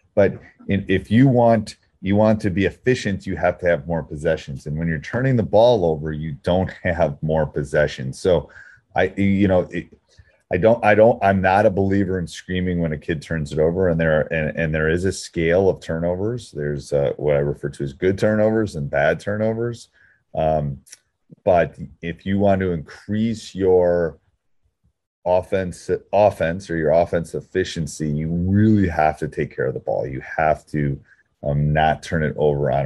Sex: male